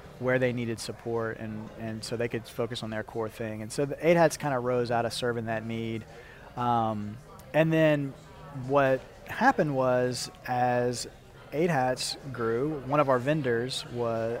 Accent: American